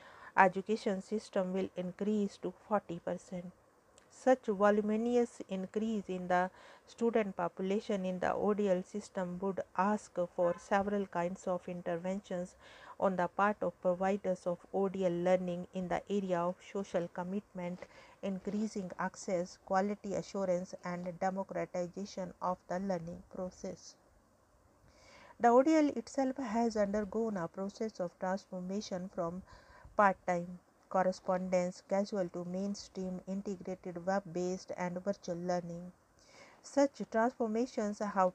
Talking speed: 115 wpm